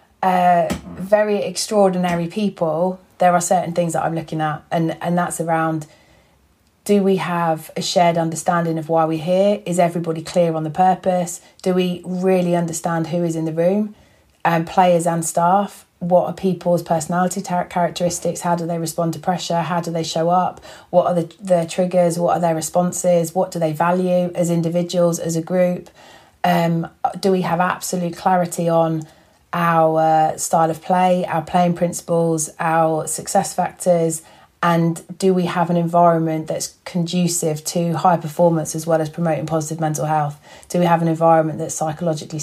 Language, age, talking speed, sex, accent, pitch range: English, 30-49, 175 wpm, female, British, 160-180 Hz